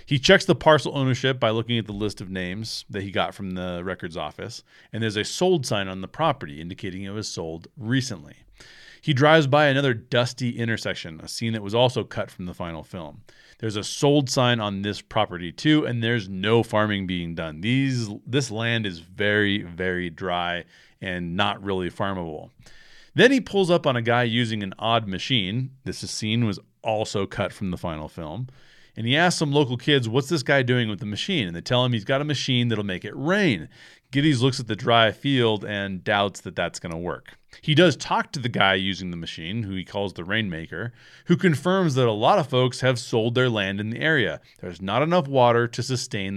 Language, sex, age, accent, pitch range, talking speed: English, male, 40-59, American, 95-130 Hz, 210 wpm